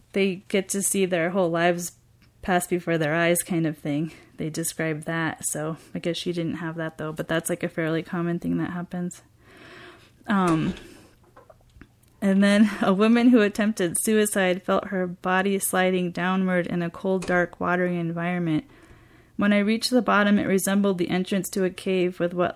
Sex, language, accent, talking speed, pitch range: female, English, American, 180 wpm, 165-195 Hz